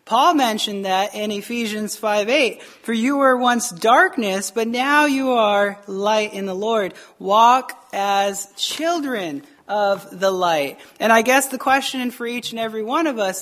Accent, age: American, 30-49